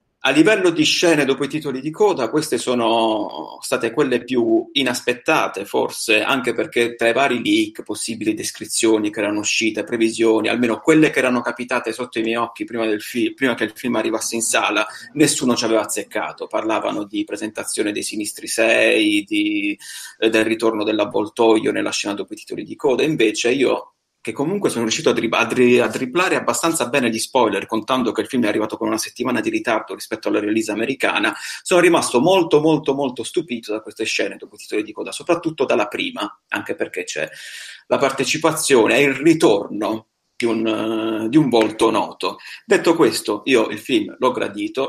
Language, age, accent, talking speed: Italian, 30-49, native, 175 wpm